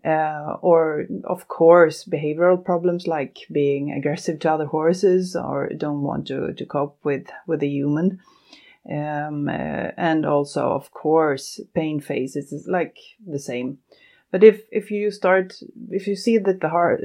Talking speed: 155 wpm